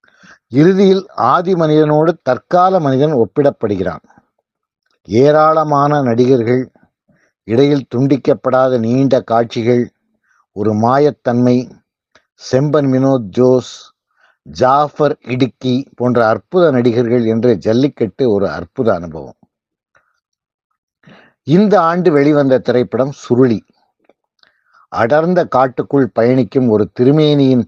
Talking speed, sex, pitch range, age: 80 wpm, male, 115-145 Hz, 50-69